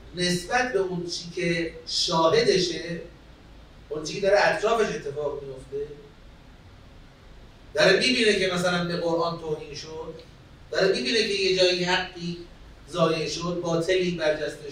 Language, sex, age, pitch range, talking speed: Persian, male, 40-59, 155-215 Hz, 120 wpm